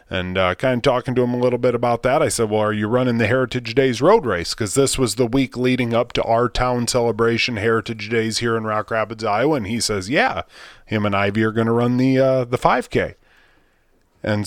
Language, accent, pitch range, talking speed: English, American, 110-130 Hz, 235 wpm